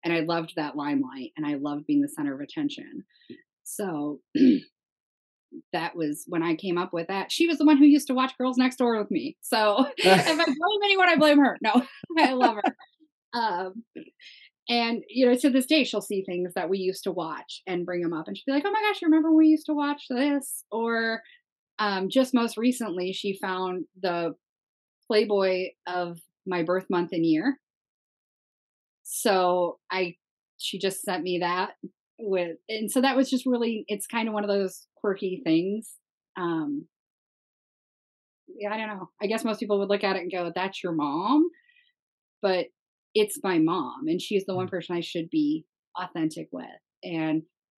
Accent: American